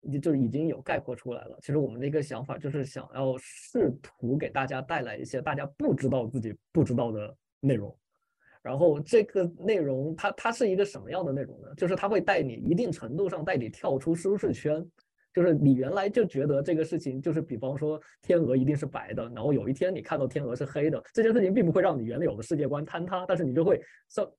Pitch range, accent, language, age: 130-160 Hz, native, Chinese, 20-39